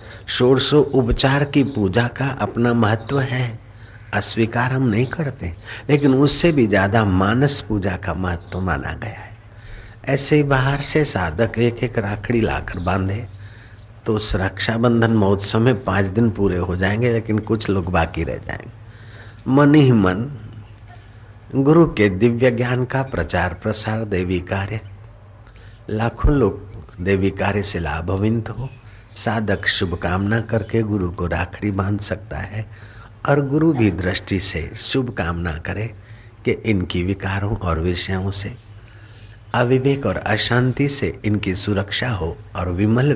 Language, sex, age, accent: Hindi, male, 50-69, native